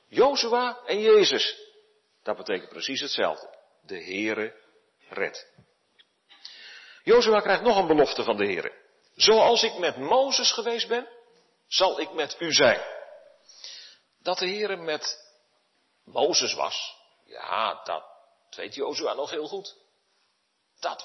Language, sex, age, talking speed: Dutch, male, 50-69, 125 wpm